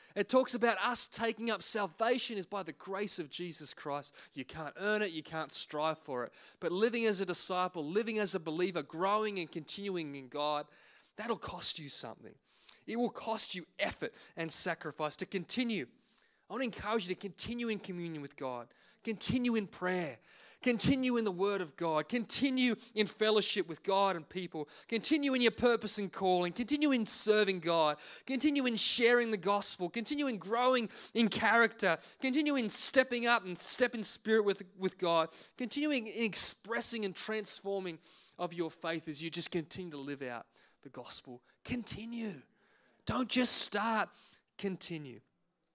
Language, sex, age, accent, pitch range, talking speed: English, male, 20-39, Australian, 165-230 Hz, 170 wpm